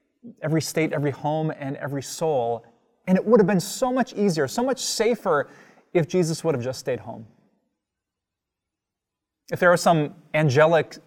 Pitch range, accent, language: 125-175 Hz, American, English